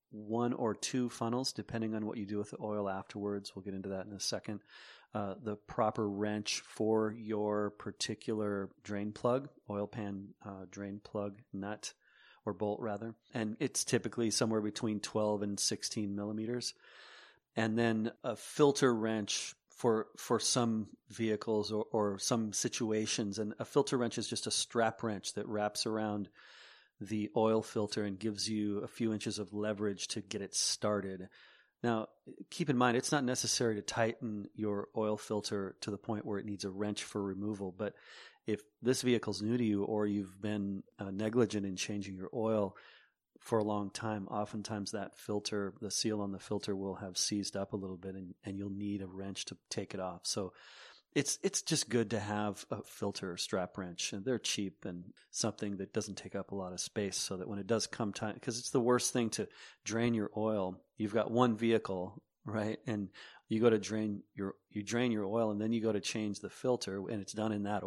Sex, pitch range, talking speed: male, 100-110 Hz, 195 wpm